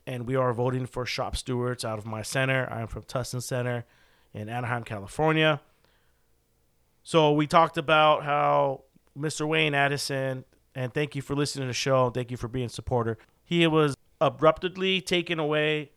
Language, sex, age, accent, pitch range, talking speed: English, male, 40-59, American, 125-140 Hz, 175 wpm